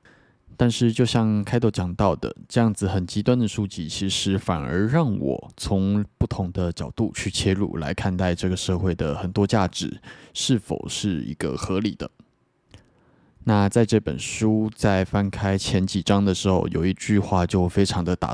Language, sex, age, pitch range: Chinese, male, 20-39, 95-110 Hz